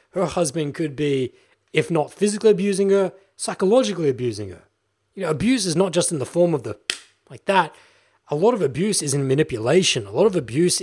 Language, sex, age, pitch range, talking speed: English, male, 20-39, 125-160 Hz, 200 wpm